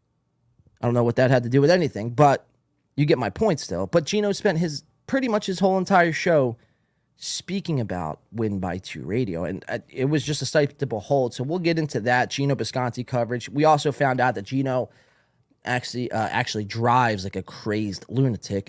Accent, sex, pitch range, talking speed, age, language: American, male, 115-145 Hz, 200 wpm, 30-49, English